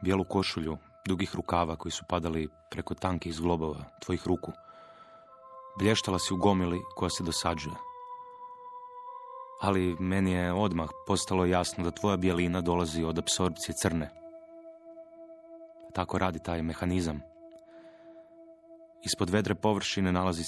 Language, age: Croatian, 30-49